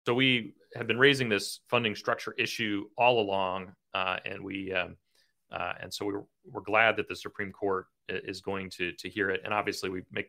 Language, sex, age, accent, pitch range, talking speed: English, male, 40-59, American, 95-135 Hz, 205 wpm